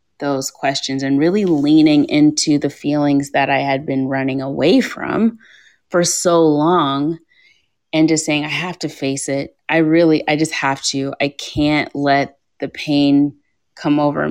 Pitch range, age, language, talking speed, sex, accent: 140-155 Hz, 20-39, English, 165 wpm, female, American